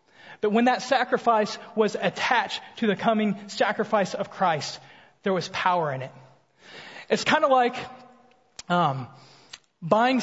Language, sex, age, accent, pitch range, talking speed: English, male, 30-49, American, 195-240 Hz, 135 wpm